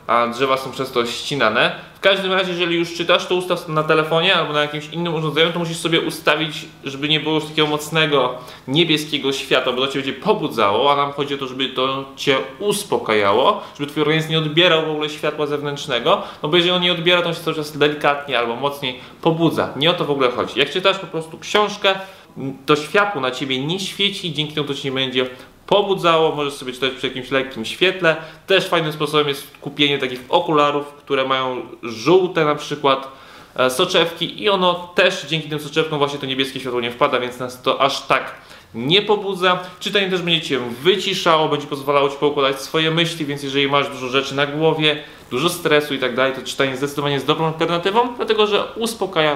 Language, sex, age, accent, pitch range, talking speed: Polish, male, 20-39, native, 135-170 Hz, 200 wpm